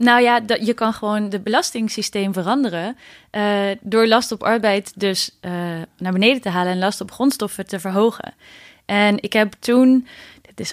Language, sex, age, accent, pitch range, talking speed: Dutch, female, 20-39, Dutch, 190-235 Hz, 175 wpm